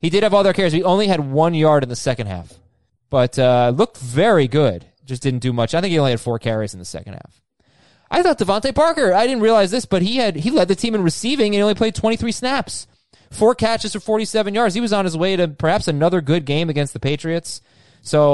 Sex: male